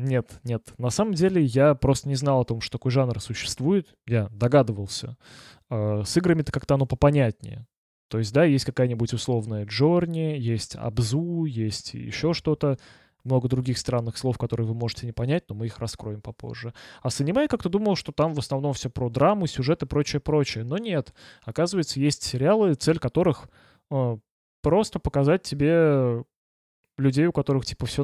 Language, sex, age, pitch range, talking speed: Russian, male, 20-39, 120-155 Hz, 165 wpm